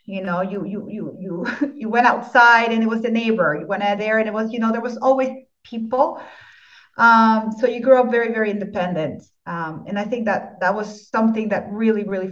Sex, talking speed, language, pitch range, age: female, 225 wpm, English, 210-255 Hz, 30-49